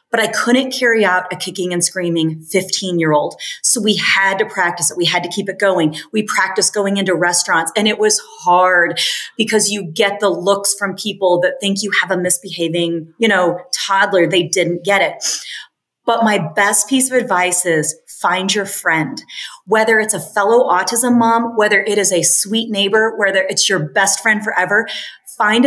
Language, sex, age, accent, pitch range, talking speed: English, female, 30-49, American, 180-225 Hz, 190 wpm